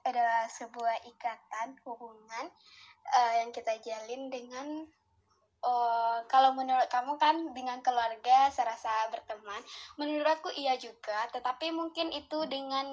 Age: 10-29